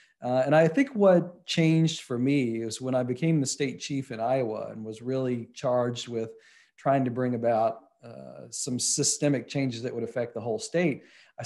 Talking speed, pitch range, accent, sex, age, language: 195 wpm, 110-130 Hz, American, male, 40-59, English